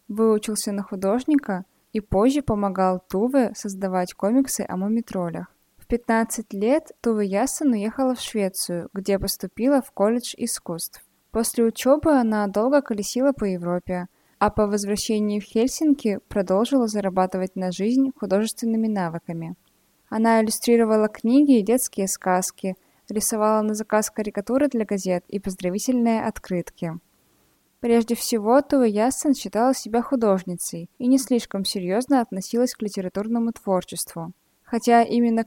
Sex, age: female, 20-39